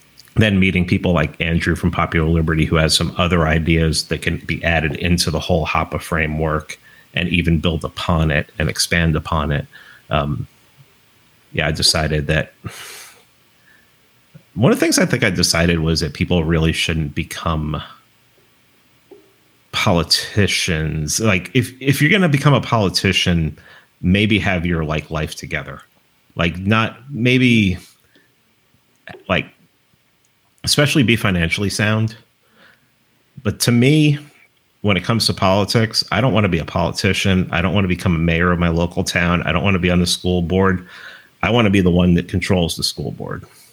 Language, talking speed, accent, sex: English, 165 wpm, American, male